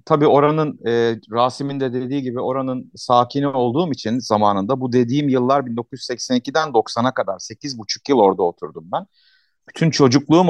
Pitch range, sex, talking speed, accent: 115-160 Hz, male, 145 wpm, native